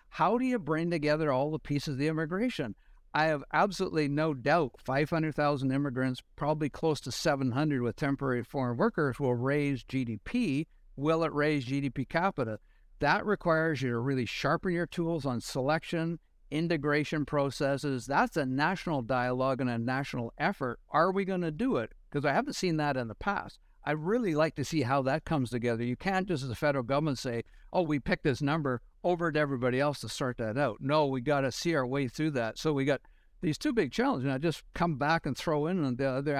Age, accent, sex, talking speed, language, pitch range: 60-79, American, male, 205 wpm, English, 130-160 Hz